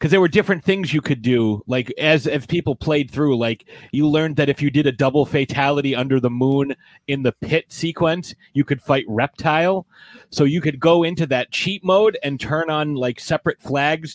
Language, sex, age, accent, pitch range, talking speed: English, male, 30-49, American, 120-150 Hz, 210 wpm